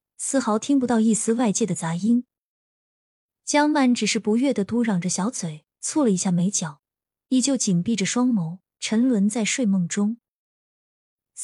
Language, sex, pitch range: Chinese, female, 185-245 Hz